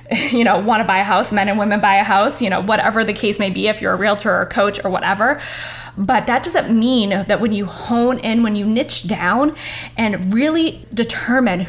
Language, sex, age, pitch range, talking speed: English, female, 10-29, 200-260 Hz, 230 wpm